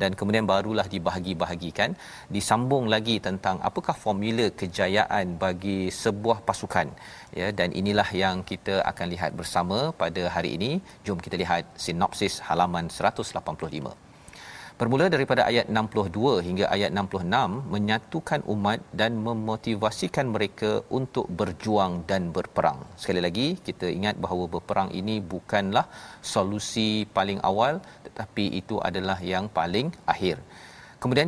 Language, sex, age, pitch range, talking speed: Malayalam, male, 40-59, 90-110 Hz, 125 wpm